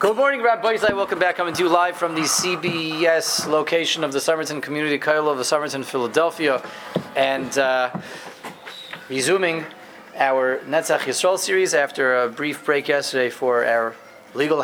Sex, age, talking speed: male, 30-49, 155 wpm